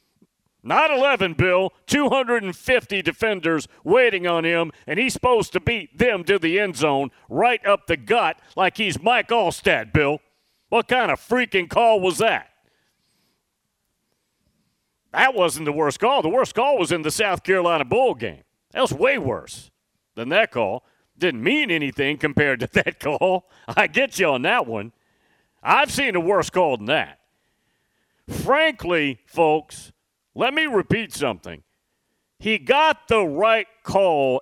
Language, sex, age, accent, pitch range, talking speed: English, male, 40-59, American, 150-220 Hz, 150 wpm